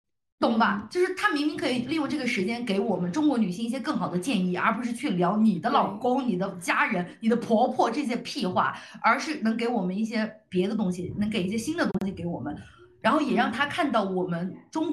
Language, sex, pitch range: Chinese, female, 185-245 Hz